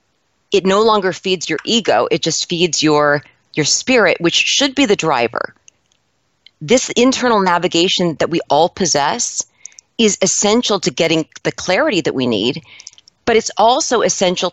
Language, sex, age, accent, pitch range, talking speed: English, female, 40-59, American, 175-230 Hz, 155 wpm